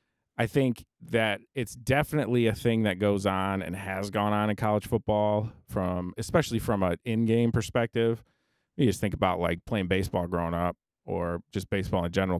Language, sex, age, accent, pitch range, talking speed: English, male, 30-49, American, 95-115 Hz, 180 wpm